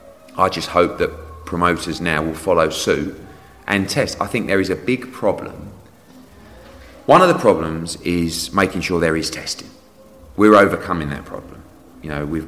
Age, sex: 30-49, male